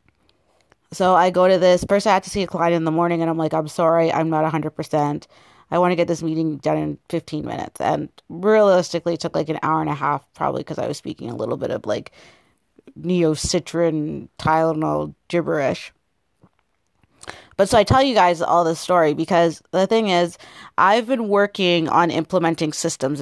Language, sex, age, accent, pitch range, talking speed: English, female, 30-49, American, 160-185 Hz, 195 wpm